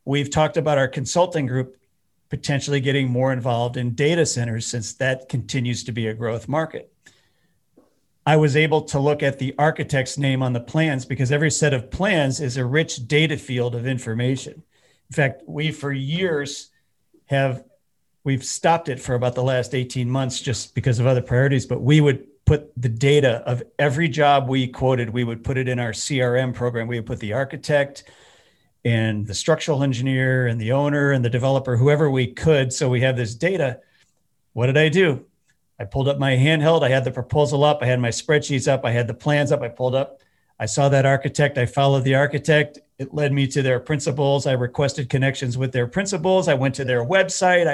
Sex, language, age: male, English, 40-59